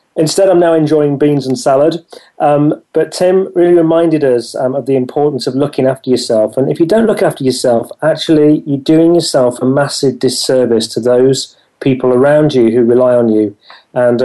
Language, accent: English, British